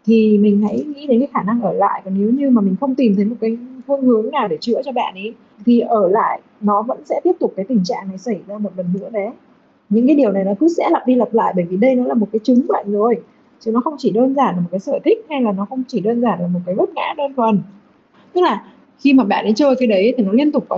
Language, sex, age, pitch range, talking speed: Vietnamese, female, 20-39, 205-260 Hz, 305 wpm